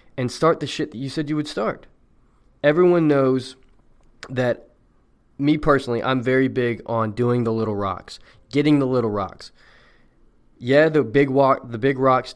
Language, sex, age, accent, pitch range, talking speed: English, male, 20-39, American, 115-145 Hz, 165 wpm